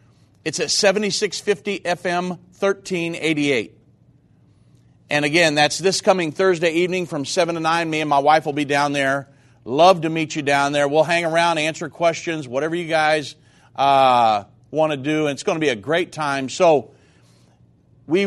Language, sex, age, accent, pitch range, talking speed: English, male, 40-59, American, 130-170 Hz, 170 wpm